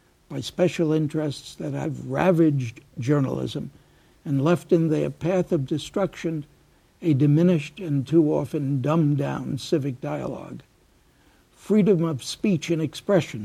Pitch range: 135-175 Hz